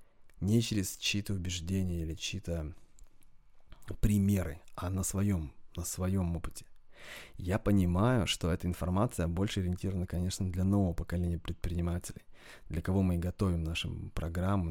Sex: male